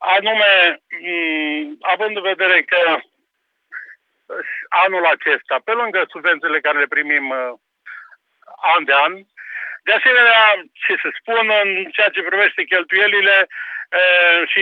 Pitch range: 155-185 Hz